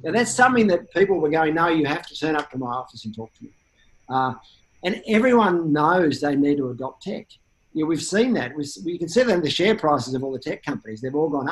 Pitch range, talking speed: 130-165 Hz, 245 wpm